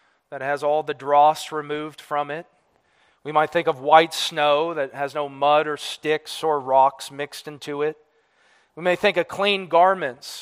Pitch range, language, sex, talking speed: 145-175 Hz, English, male, 180 wpm